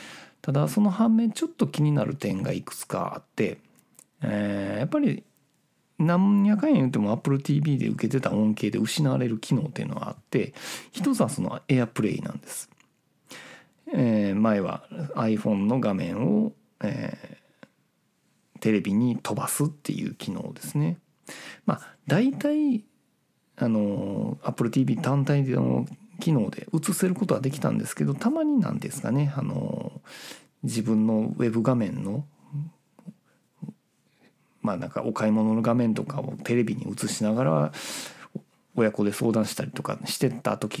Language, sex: Japanese, male